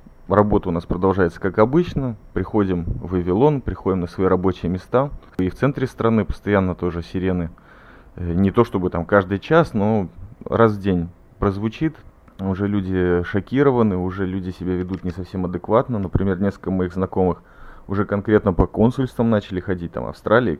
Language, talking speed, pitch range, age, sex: Russian, 155 wpm, 90-110 Hz, 30-49, male